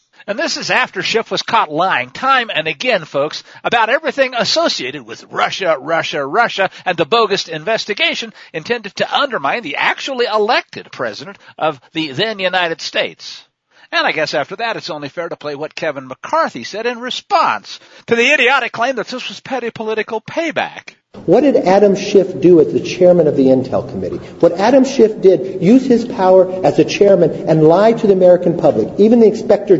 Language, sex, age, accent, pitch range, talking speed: English, male, 60-79, American, 165-225 Hz, 185 wpm